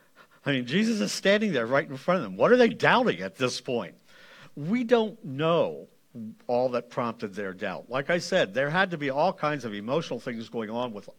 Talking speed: 220 wpm